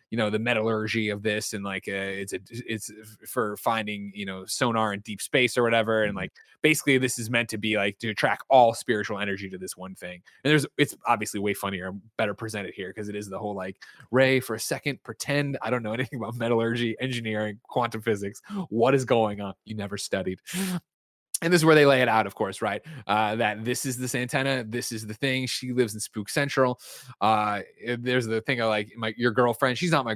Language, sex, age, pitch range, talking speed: English, male, 20-39, 105-135 Hz, 225 wpm